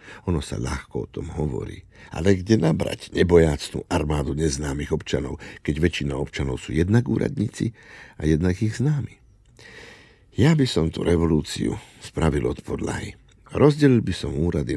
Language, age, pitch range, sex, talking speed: Slovak, 60-79, 75-110 Hz, male, 140 wpm